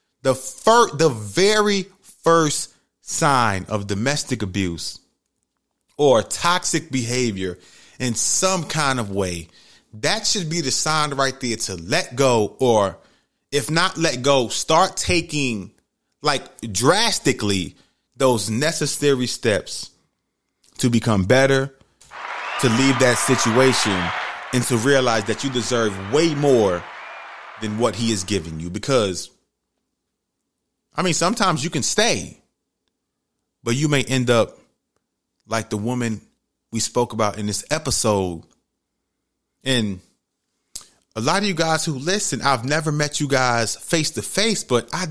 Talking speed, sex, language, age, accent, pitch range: 130 wpm, male, English, 30-49, American, 110-150 Hz